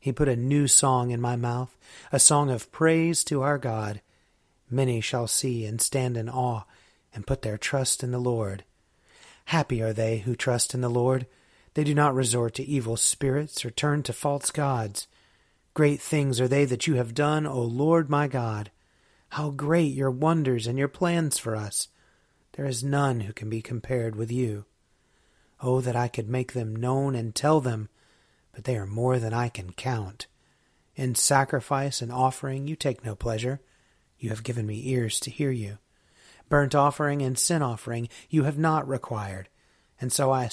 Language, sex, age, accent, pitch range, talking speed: English, male, 30-49, American, 115-140 Hz, 185 wpm